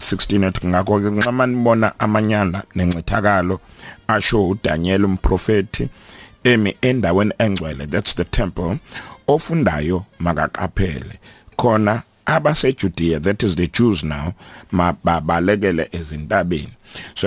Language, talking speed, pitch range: English, 110 wpm, 90-105 Hz